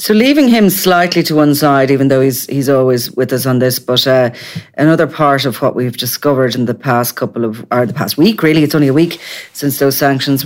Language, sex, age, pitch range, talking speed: English, female, 30-49, 120-140 Hz, 235 wpm